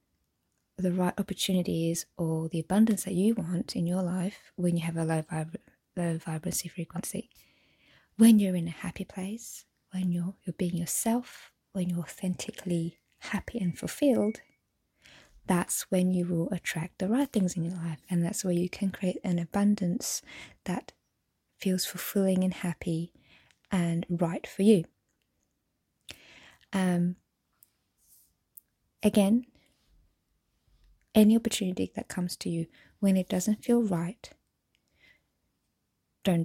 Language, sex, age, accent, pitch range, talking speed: English, female, 20-39, British, 170-200 Hz, 130 wpm